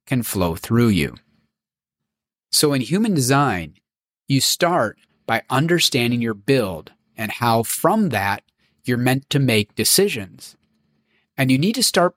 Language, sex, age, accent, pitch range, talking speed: English, male, 30-49, American, 110-165 Hz, 140 wpm